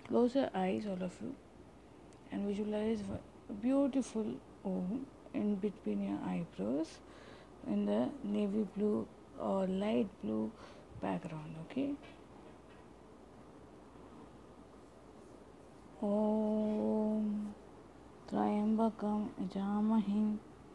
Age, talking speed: 30-49, 85 wpm